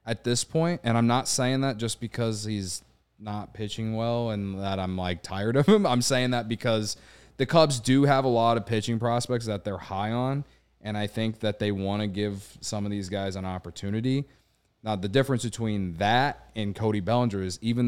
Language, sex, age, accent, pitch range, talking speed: English, male, 20-39, American, 100-120 Hz, 210 wpm